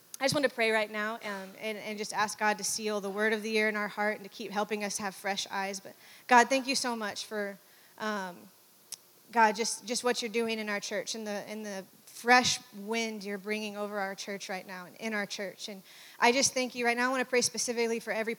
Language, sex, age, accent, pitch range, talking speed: English, female, 20-39, American, 210-240 Hz, 260 wpm